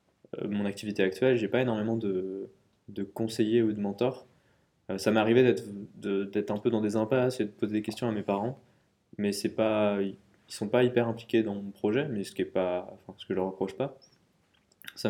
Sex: male